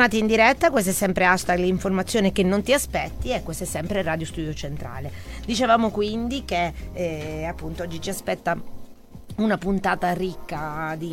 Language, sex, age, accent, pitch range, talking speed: Italian, female, 30-49, native, 145-180 Hz, 160 wpm